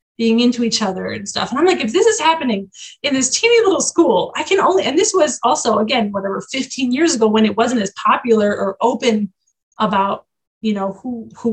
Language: English